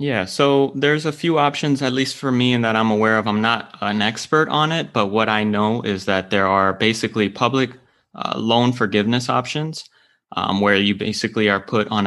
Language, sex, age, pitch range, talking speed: English, male, 20-39, 100-125 Hz, 210 wpm